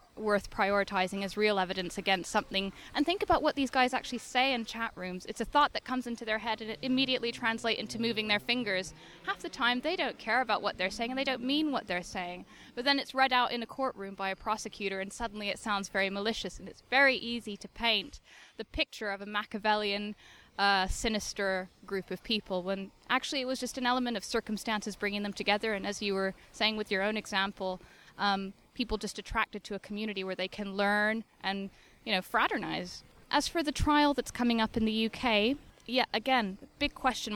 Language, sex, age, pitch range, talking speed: English, female, 10-29, 195-235 Hz, 215 wpm